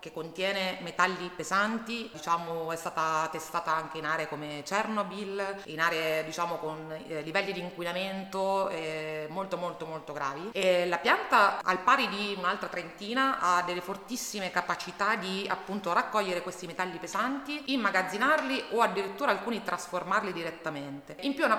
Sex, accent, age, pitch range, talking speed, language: female, native, 30-49, 165-205 Hz, 150 wpm, Italian